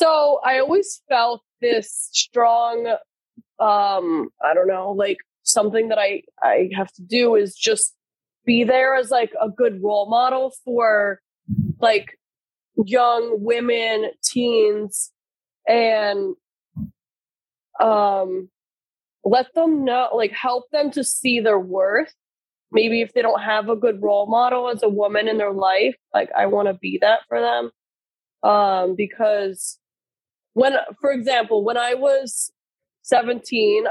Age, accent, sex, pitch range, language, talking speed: 20-39, American, female, 200-250 Hz, English, 135 wpm